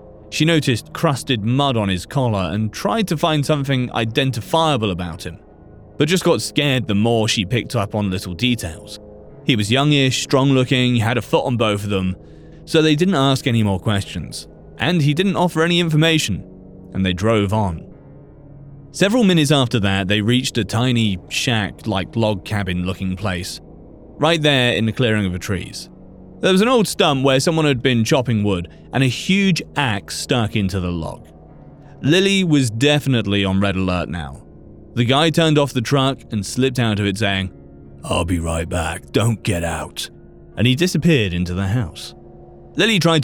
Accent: British